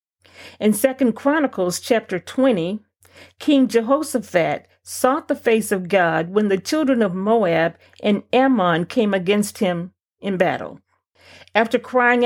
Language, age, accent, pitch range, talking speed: English, 40-59, American, 185-255 Hz, 125 wpm